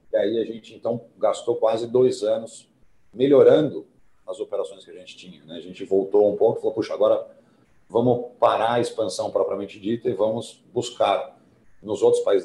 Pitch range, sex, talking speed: 110-180 Hz, male, 185 wpm